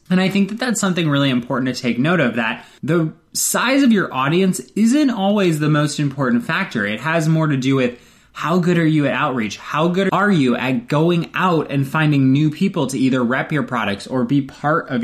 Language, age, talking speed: English, 20-39, 225 wpm